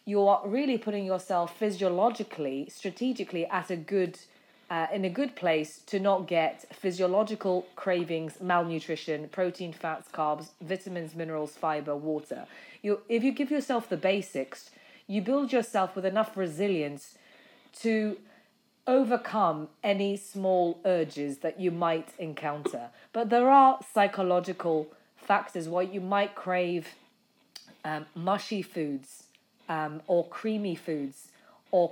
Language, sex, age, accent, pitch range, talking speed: English, female, 30-49, British, 170-210 Hz, 125 wpm